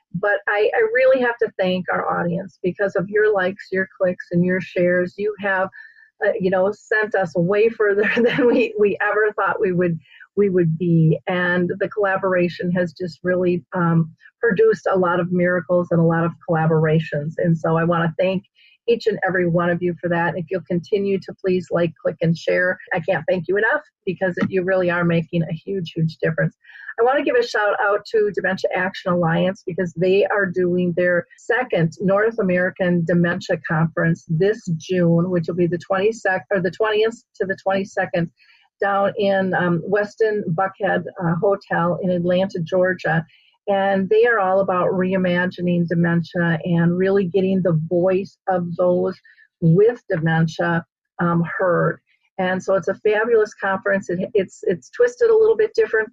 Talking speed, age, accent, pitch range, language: 175 wpm, 40-59, American, 175-200 Hz, English